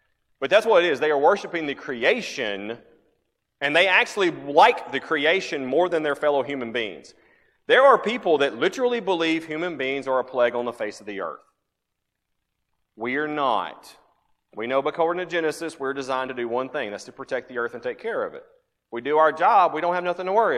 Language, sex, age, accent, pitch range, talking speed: English, male, 30-49, American, 135-190 Hz, 215 wpm